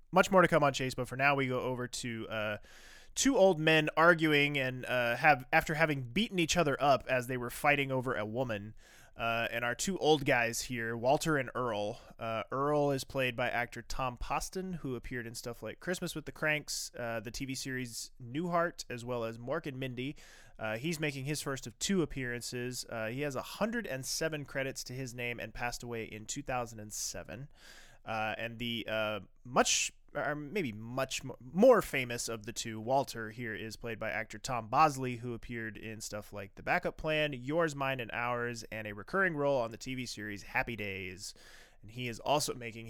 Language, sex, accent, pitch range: English, male, American, 110-140 Hz